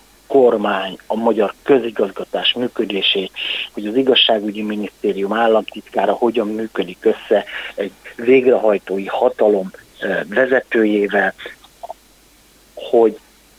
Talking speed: 80 wpm